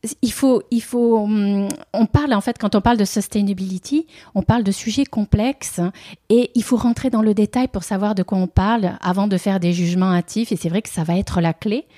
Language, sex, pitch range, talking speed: French, female, 180-230 Hz, 230 wpm